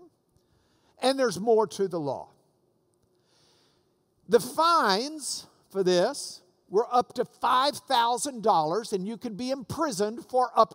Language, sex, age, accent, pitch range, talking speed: English, male, 50-69, American, 195-280 Hz, 115 wpm